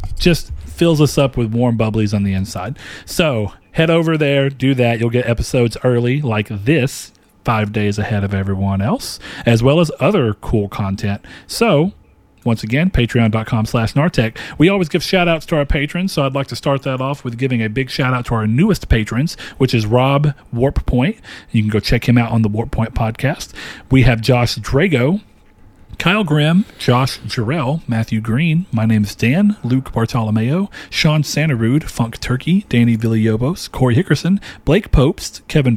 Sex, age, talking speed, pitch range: male, 40-59, 180 wpm, 115-150 Hz